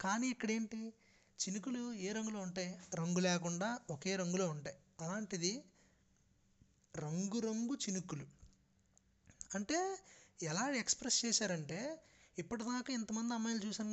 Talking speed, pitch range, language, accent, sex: 95 wpm, 175-225 Hz, Telugu, native, male